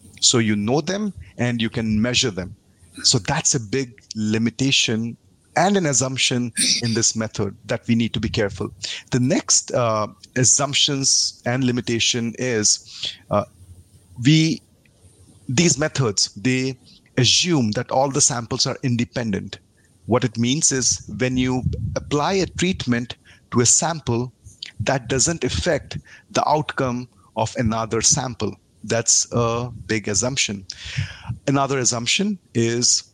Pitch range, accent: 110-135 Hz, Indian